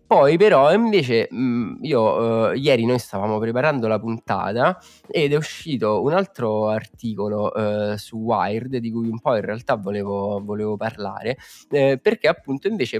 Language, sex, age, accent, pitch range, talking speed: Italian, male, 20-39, native, 105-120 Hz, 150 wpm